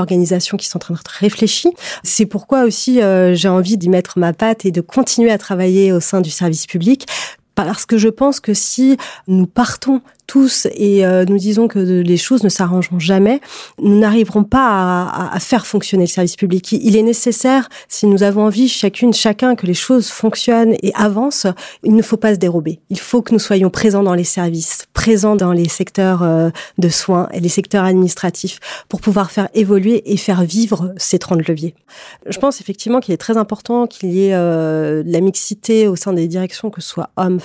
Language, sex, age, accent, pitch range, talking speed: French, female, 30-49, French, 180-225 Hz, 210 wpm